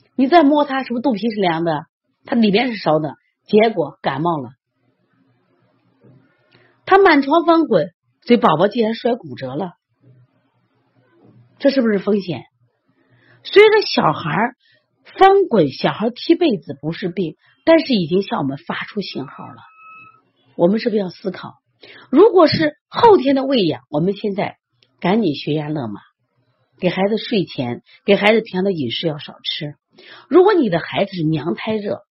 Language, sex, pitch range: Chinese, female, 150-250 Hz